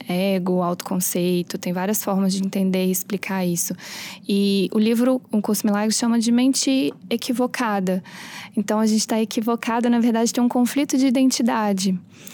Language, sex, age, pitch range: Portuguese, female, 20-39, 195-245 Hz